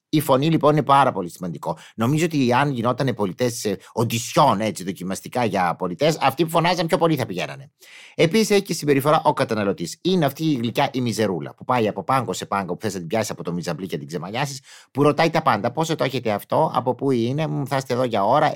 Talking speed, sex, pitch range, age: 215 wpm, male, 120-160 Hz, 30-49